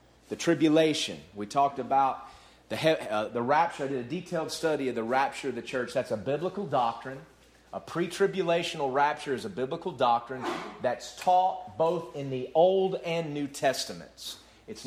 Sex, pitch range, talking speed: male, 120-165 Hz, 165 wpm